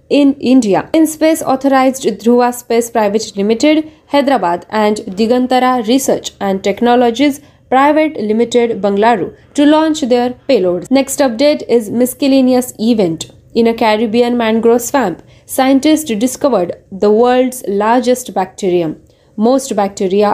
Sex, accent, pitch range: female, native, 210-260 Hz